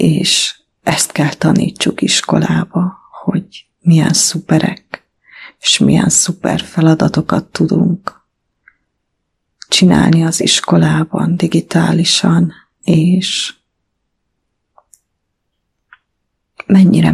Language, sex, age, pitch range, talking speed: English, female, 30-49, 155-180 Hz, 65 wpm